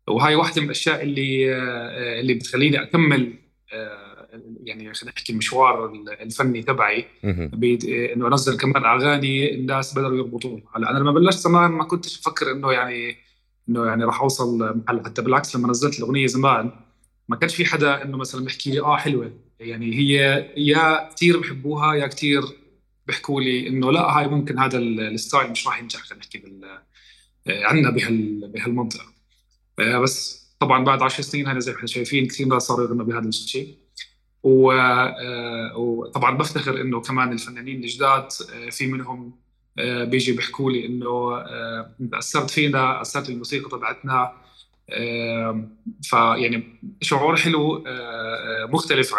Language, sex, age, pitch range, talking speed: Arabic, male, 20-39, 120-140 Hz, 135 wpm